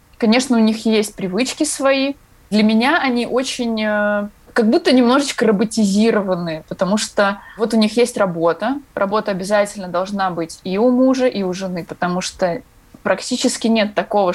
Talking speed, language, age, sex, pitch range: 150 wpm, Russian, 20-39, female, 185-235 Hz